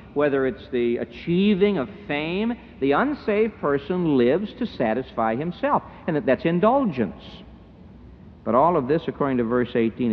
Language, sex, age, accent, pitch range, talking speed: English, male, 60-79, American, 110-170 Hz, 140 wpm